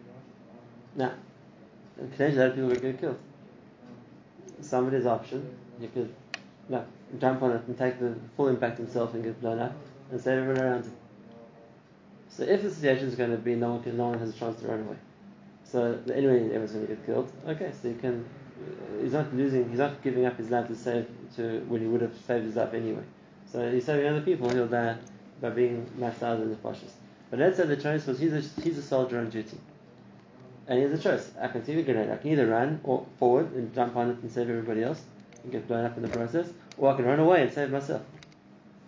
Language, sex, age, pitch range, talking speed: English, male, 20-39, 120-140 Hz, 220 wpm